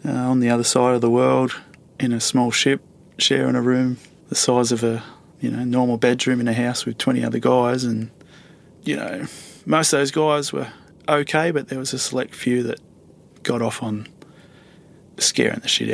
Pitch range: 115-130 Hz